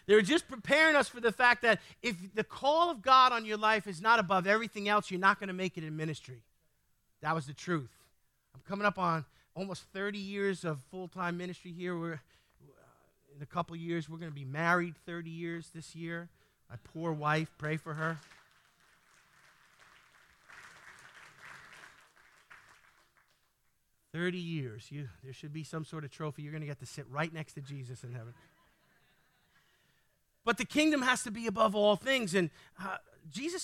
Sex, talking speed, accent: male, 180 wpm, American